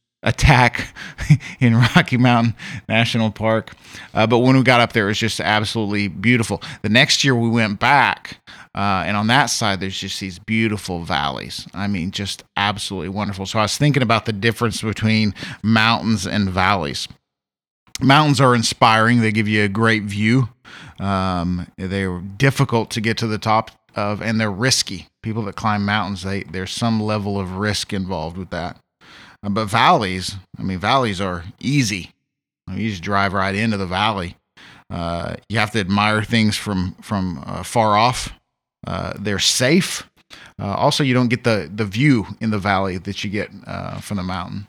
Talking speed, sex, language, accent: 175 wpm, male, English, American